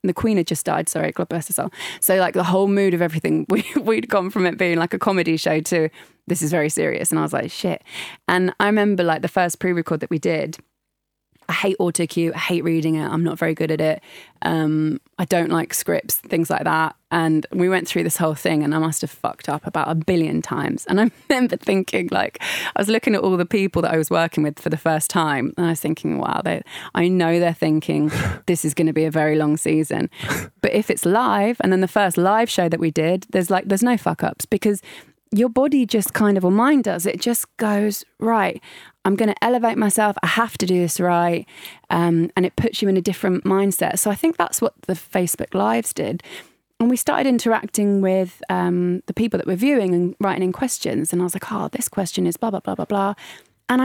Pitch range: 165-215 Hz